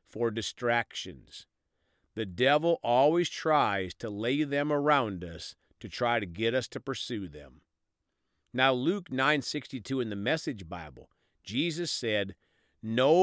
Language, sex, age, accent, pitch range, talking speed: English, male, 50-69, American, 105-150 Hz, 130 wpm